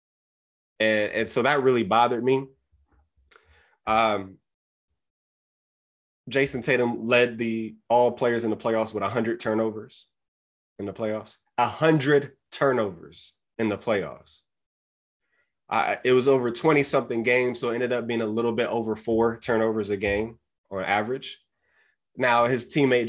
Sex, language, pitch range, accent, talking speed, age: male, English, 105-120 Hz, American, 140 wpm, 20-39